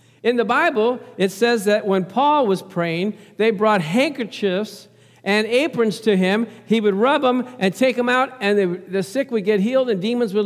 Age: 50-69